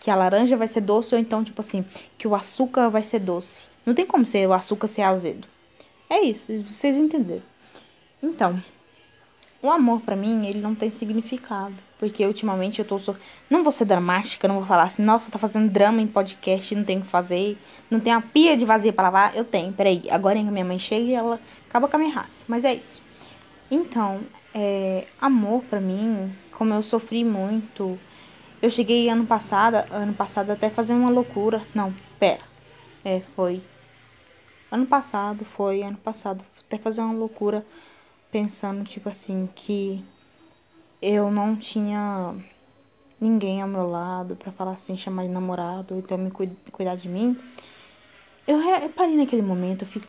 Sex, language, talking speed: female, Portuguese, 175 wpm